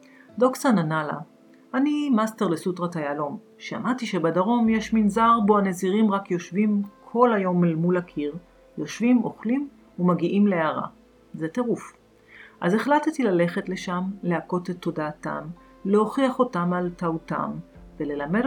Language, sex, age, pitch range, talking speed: Hebrew, female, 40-59, 170-245 Hz, 125 wpm